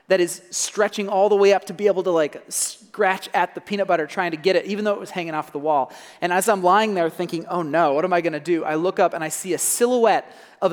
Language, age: English, 30-49